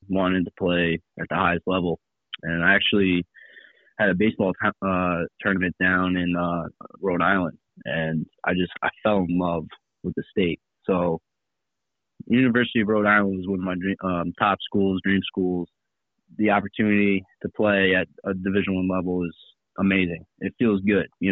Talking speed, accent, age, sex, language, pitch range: 170 wpm, American, 20-39, male, English, 85-95 Hz